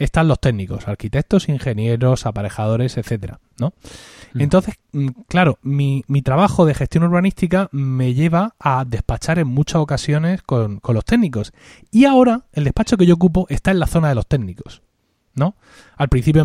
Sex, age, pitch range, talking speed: male, 30-49, 125-185 Hz, 160 wpm